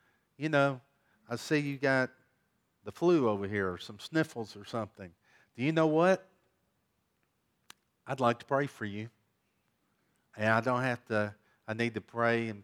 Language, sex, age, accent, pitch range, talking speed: English, male, 50-69, American, 110-150 Hz, 165 wpm